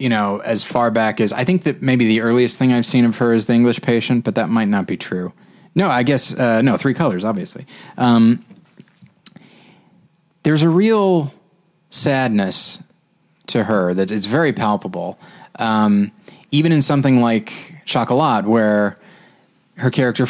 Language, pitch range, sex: English, 105-145 Hz, male